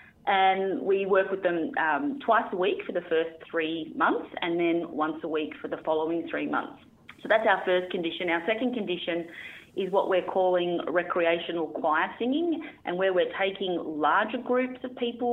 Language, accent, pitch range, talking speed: English, Australian, 160-225 Hz, 185 wpm